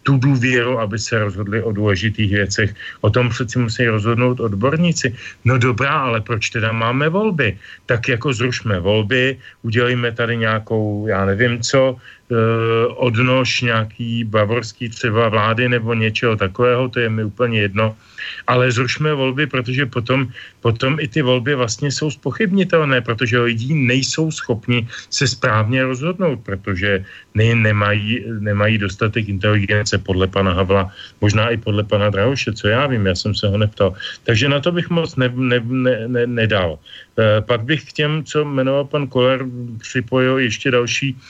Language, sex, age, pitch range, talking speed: Slovak, male, 40-59, 110-130 Hz, 155 wpm